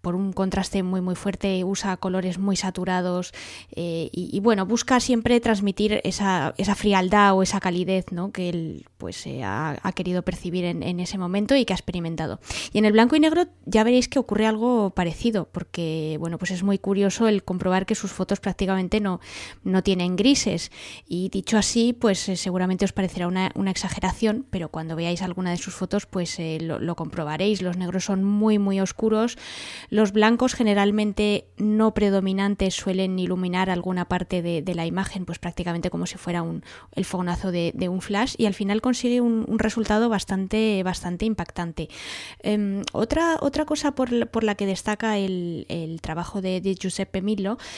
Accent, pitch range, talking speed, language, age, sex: Spanish, 180-215 Hz, 185 wpm, English, 20-39, female